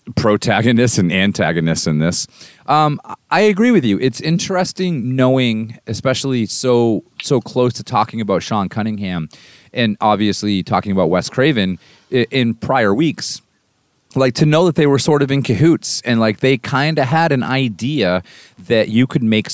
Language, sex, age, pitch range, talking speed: English, male, 30-49, 95-130 Hz, 165 wpm